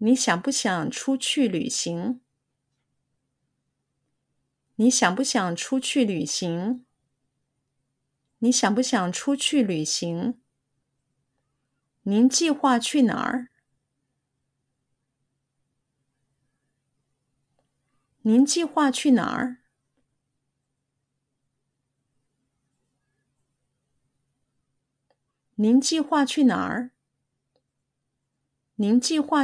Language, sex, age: Chinese, female, 50-69